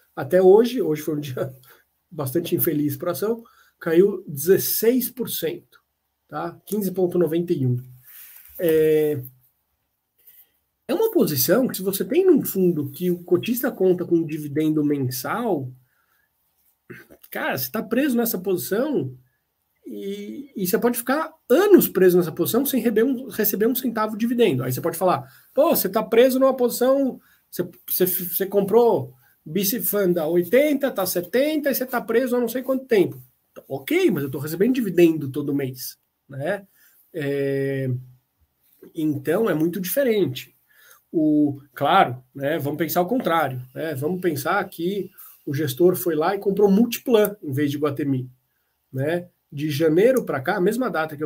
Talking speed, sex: 145 wpm, male